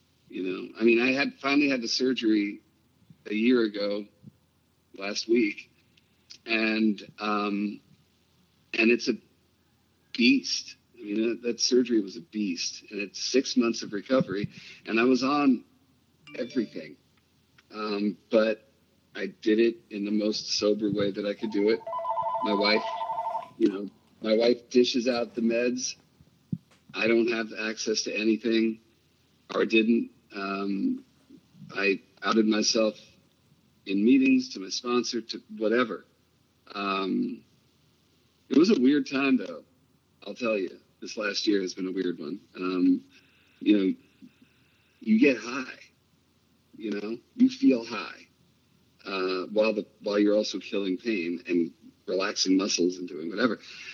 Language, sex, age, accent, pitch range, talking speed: English, male, 50-69, American, 100-120 Hz, 140 wpm